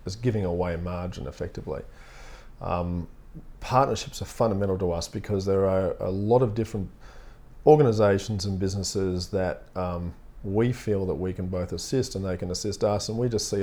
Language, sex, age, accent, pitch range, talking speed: English, male, 40-59, Australian, 95-125 Hz, 170 wpm